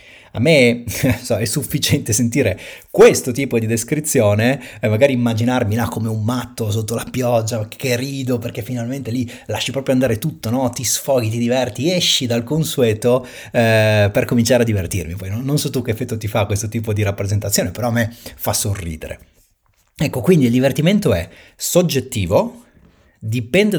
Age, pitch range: 30-49, 100-130 Hz